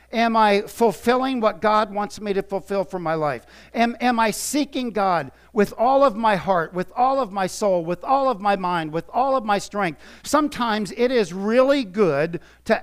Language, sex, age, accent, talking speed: English, male, 50-69, American, 200 wpm